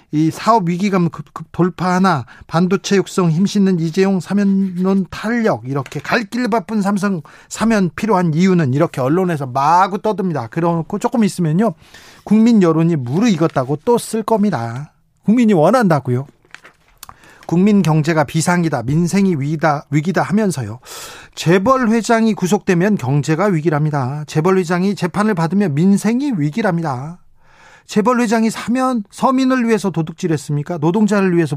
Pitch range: 155-210 Hz